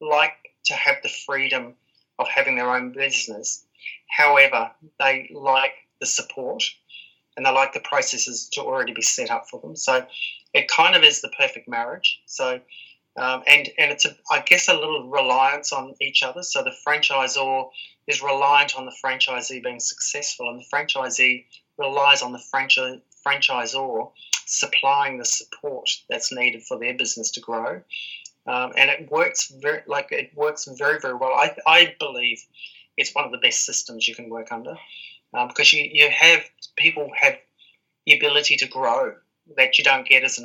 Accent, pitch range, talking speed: Australian, 125-150 Hz, 175 wpm